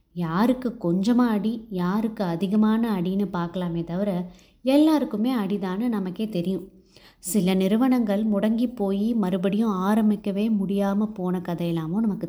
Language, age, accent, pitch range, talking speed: Tamil, 20-39, native, 185-240 Hz, 110 wpm